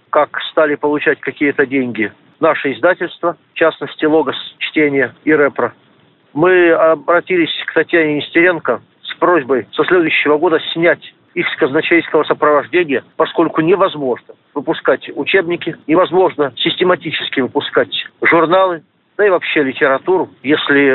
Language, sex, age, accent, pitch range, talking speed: Russian, male, 40-59, native, 145-175 Hz, 115 wpm